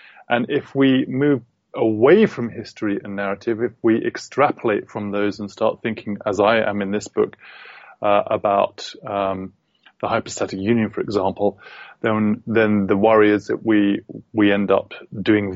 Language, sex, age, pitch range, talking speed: English, male, 30-49, 100-110 Hz, 160 wpm